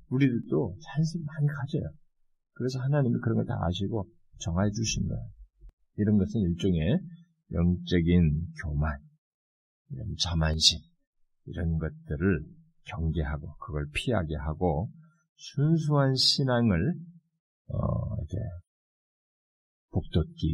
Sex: male